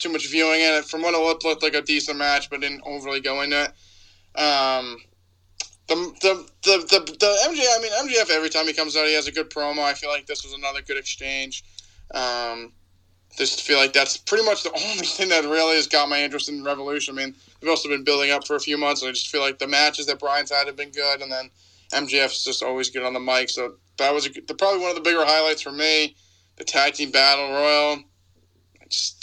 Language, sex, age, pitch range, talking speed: English, male, 20-39, 130-155 Hz, 245 wpm